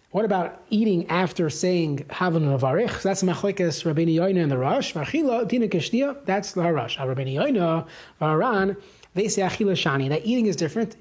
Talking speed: 60 wpm